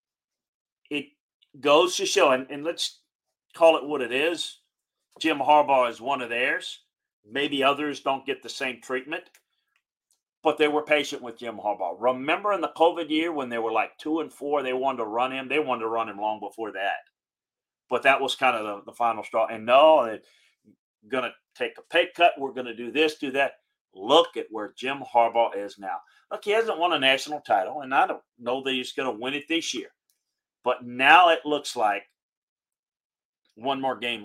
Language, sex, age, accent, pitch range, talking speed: English, male, 40-59, American, 125-160 Hz, 200 wpm